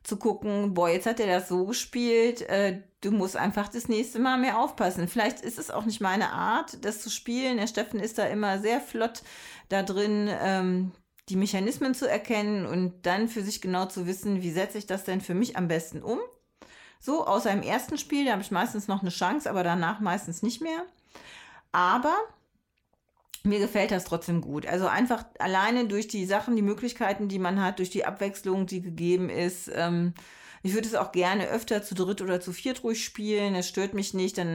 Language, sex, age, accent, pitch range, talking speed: German, female, 30-49, German, 185-230 Hz, 205 wpm